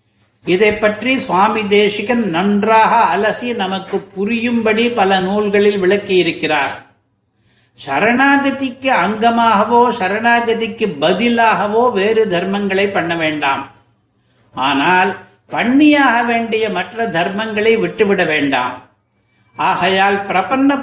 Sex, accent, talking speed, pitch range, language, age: male, native, 80 wpm, 170-230 Hz, Tamil, 60-79